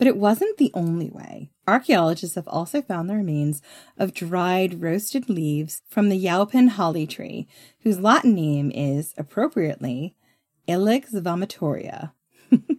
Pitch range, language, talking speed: 155-220 Hz, English, 130 wpm